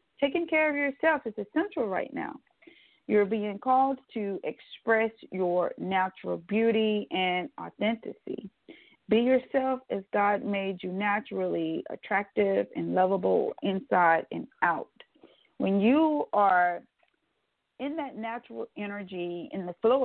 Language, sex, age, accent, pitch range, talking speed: English, female, 40-59, American, 190-250 Hz, 125 wpm